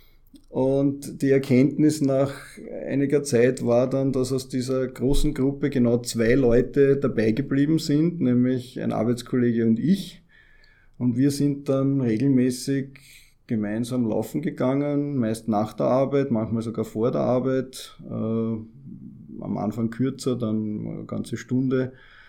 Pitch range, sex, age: 115-135 Hz, male, 20-39